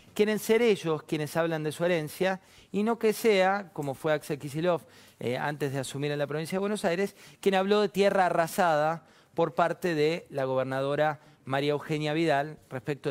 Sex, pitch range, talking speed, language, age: male, 145-195 Hz, 185 wpm, Spanish, 40-59